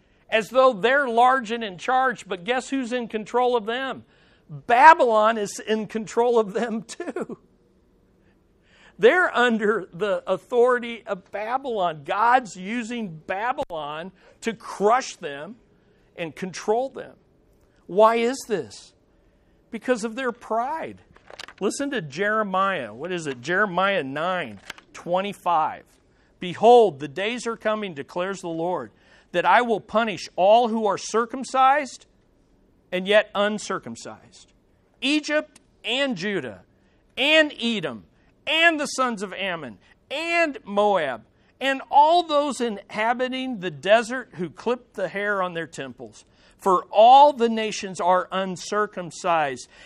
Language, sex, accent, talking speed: English, male, American, 125 wpm